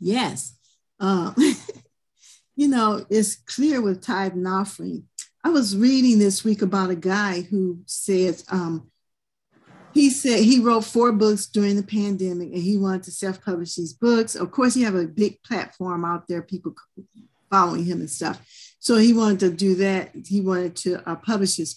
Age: 50-69